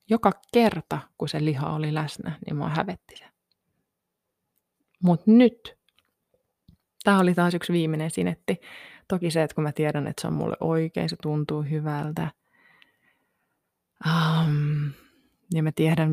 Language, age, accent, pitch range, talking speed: Finnish, 20-39, native, 155-195 Hz, 135 wpm